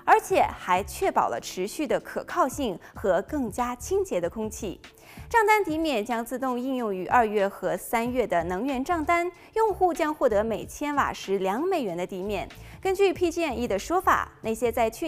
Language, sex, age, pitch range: Chinese, female, 20-39, 220-345 Hz